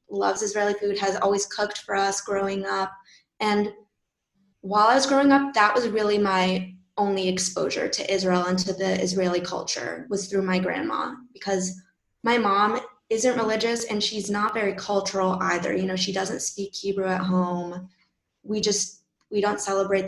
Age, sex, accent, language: 20-39, female, American, English